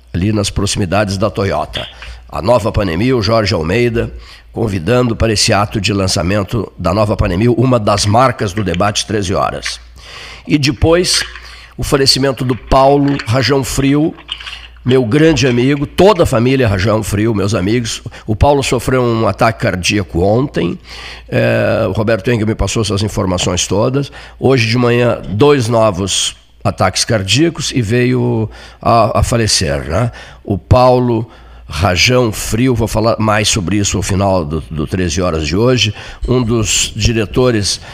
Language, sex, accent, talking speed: Portuguese, male, Brazilian, 145 wpm